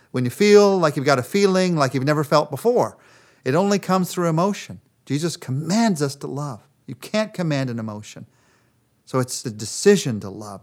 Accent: American